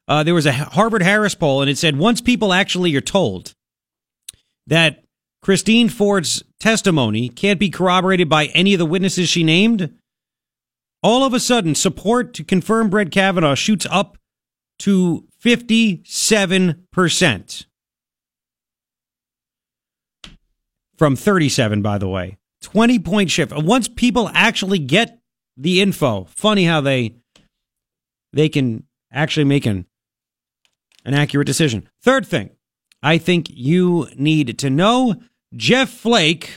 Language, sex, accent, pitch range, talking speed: English, male, American, 150-205 Hz, 130 wpm